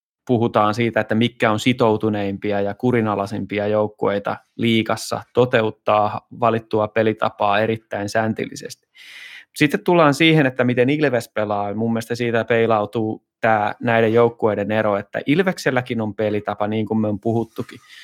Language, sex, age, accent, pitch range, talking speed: Finnish, male, 20-39, native, 110-140 Hz, 130 wpm